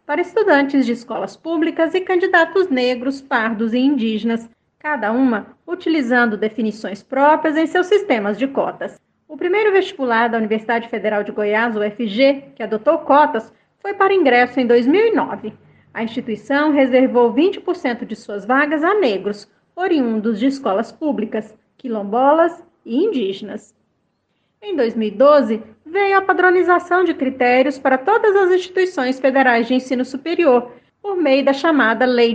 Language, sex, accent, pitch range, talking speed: Portuguese, female, Brazilian, 230-325 Hz, 135 wpm